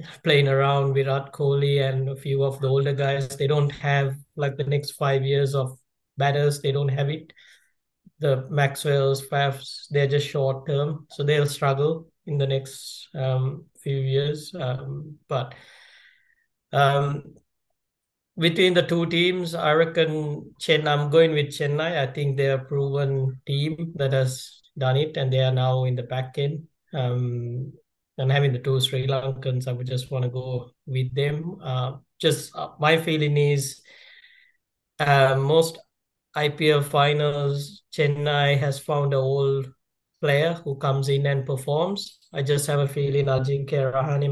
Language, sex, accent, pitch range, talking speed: English, male, Indian, 135-150 Hz, 160 wpm